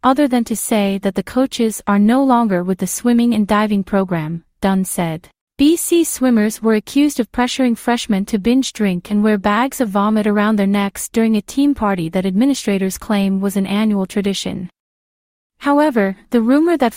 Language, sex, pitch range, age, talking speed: English, female, 200-245 Hz, 30-49, 180 wpm